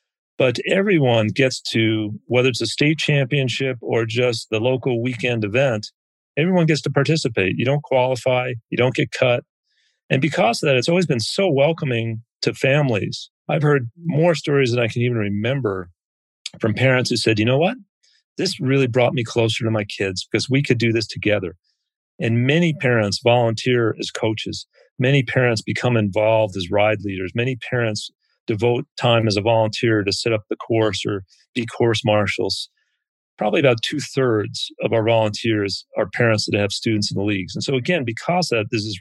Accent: American